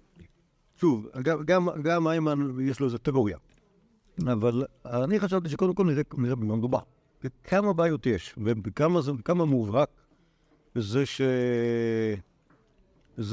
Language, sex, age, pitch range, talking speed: Hebrew, male, 60-79, 105-145 Hz, 105 wpm